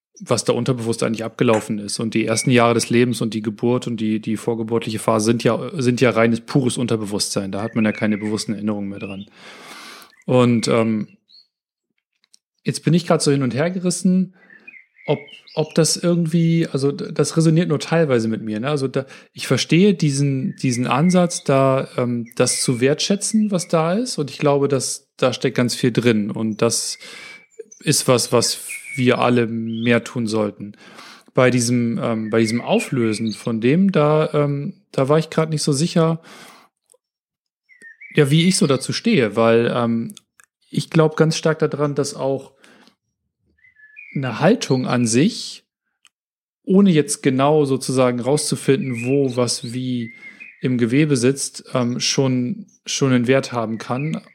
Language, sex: German, male